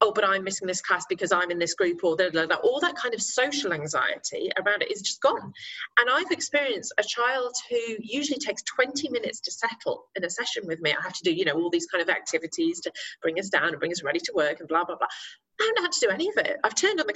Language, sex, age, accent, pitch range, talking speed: English, female, 30-49, British, 185-305 Hz, 275 wpm